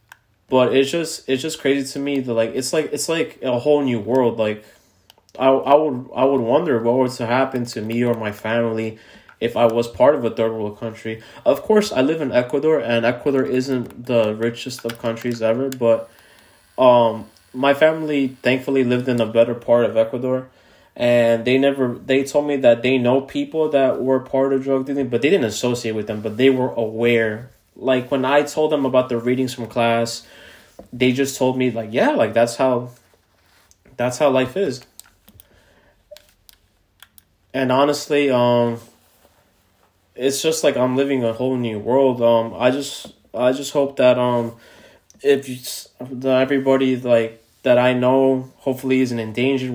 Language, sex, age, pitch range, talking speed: English, male, 20-39, 115-130 Hz, 175 wpm